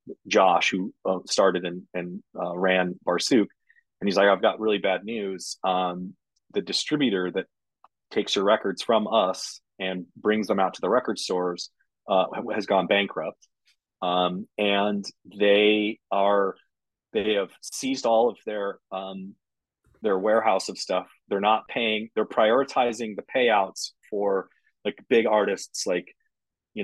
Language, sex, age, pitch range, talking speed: English, male, 30-49, 95-110 Hz, 150 wpm